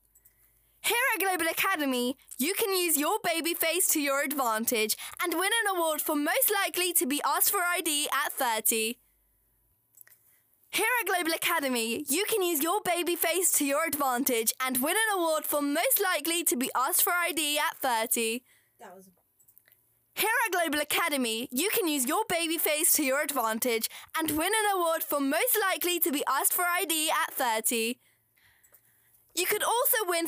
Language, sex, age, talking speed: English, female, 10-29, 170 wpm